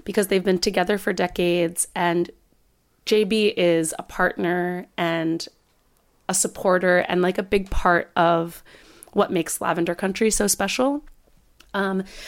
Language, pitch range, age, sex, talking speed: English, 175-210 Hz, 30-49, female, 130 wpm